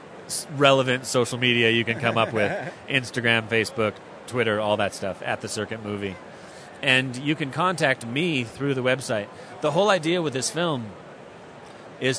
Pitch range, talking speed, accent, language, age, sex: 115-135 Hz, 160 wpm, American, English, 30-49, male